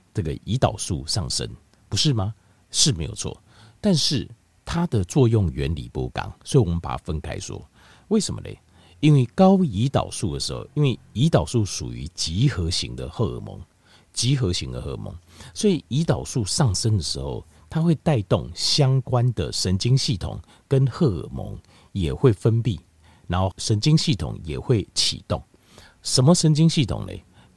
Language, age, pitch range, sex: Chinese, 50-69, 90-130 Hz, male